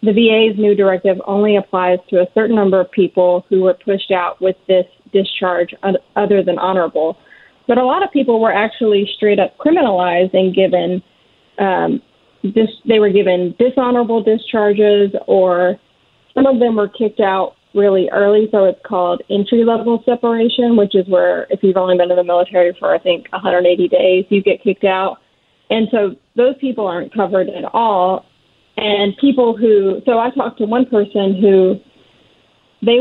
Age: 30-49